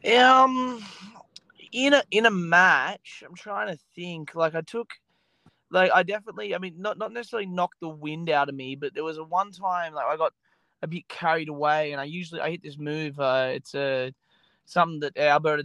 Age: 20-39